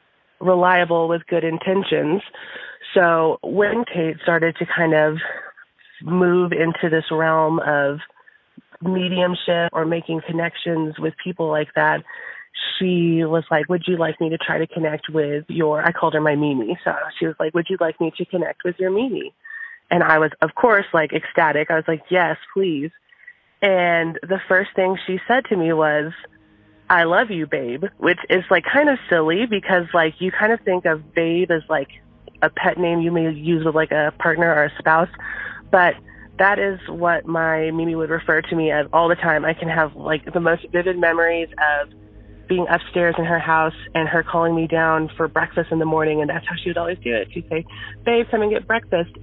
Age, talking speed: 30-49, 195 wpm